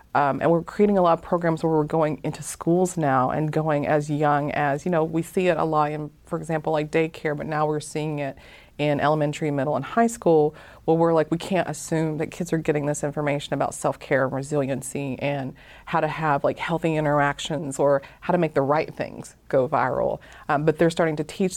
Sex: female